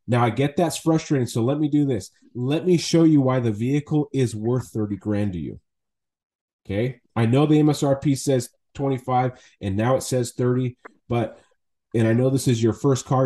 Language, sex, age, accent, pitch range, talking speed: English, male, 30-49, American, 110-140 Hz, 205 wpm